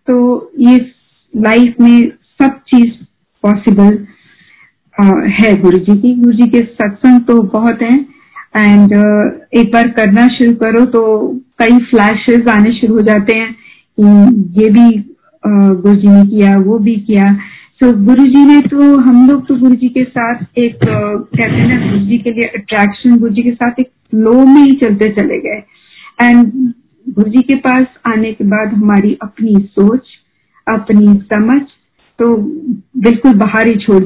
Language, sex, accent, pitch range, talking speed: Hindi, female, native, 215-255 Hz, 150 wpm